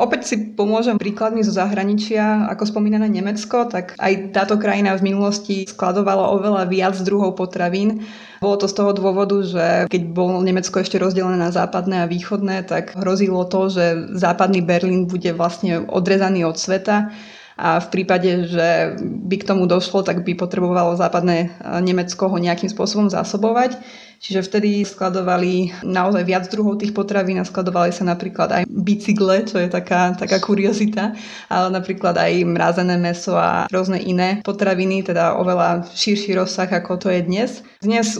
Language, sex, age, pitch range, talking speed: Slovak, female, 20-39, 180-205 Hz, 155 wpm